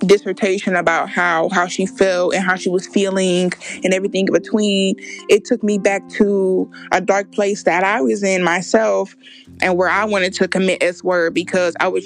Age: 20-39